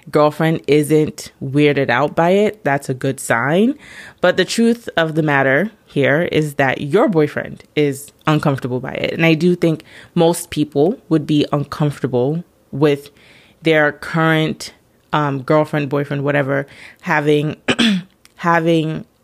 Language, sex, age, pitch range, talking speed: English, female, 20-39, 140-165 Hz, 135 wpm